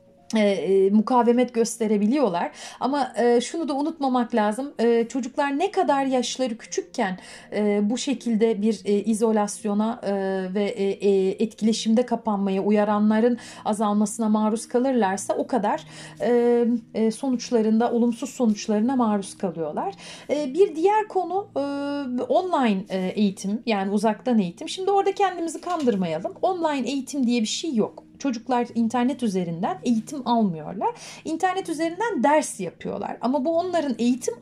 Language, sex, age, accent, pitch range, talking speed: Turkish, female, 40-59, native, 210-255 Hz, 125 wpm